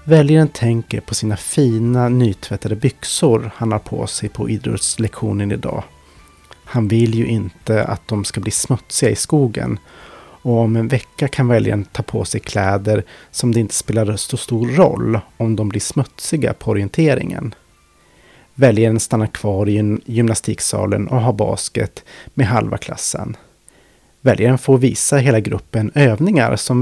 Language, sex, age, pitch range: Swedish, male, 30-49, 105-130 Hz